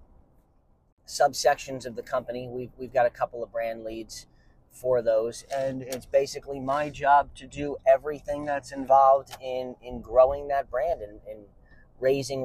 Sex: male